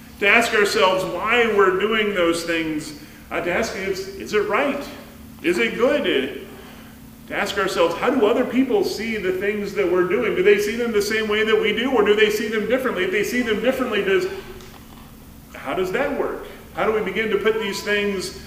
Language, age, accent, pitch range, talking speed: English, 40-59, American, 195-245 Hz, 215 wpm